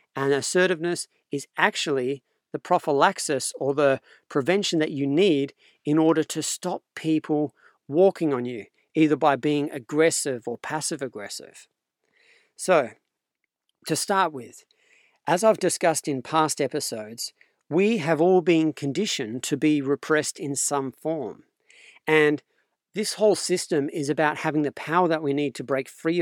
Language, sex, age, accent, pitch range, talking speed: English, male, 40-59, Australian, 140-180 Hz, 145 wpm